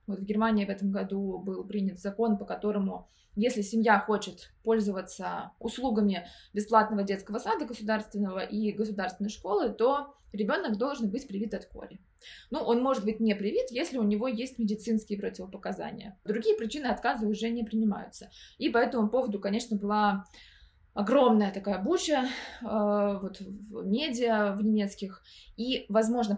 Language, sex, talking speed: Russian, female, 145 wpm